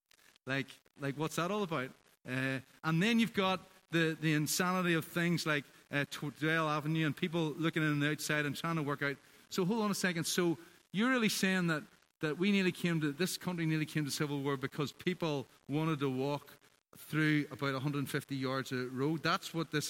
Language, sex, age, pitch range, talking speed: English, male, 40-59, 145-180 Hz, 200 wpm